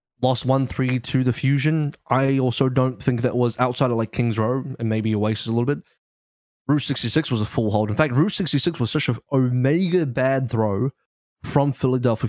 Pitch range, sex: 105-130 Hz, male